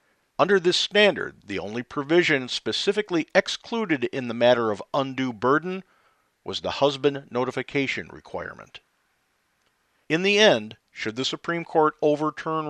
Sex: male